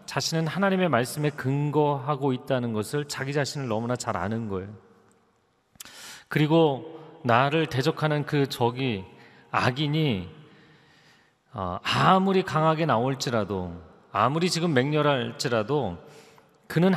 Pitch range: 120-160 Hz